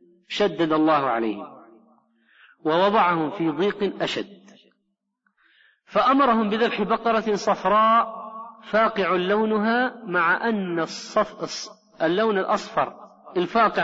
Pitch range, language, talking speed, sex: 150-215 Hz, Arabic, 80 wpm, male